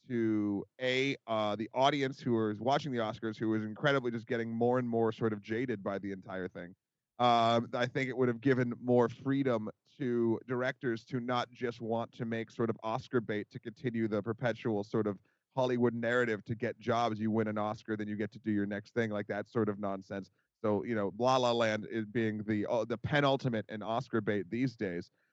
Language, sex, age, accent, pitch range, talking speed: English, male, 30-49, American, 110-135 Hz, 215 wpm